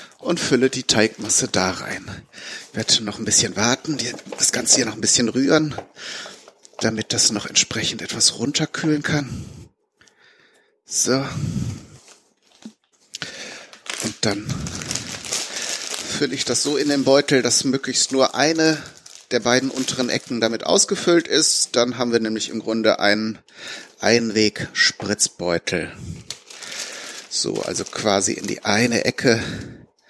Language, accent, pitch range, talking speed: German, German, 115-145 Hz, 125 wpm